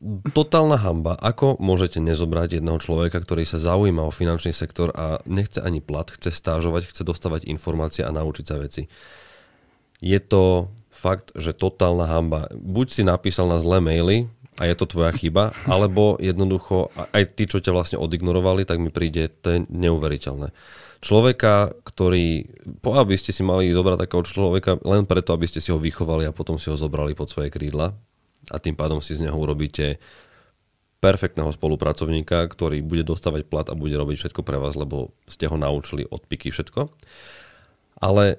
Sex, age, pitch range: male, 30-49, 80-95 Hz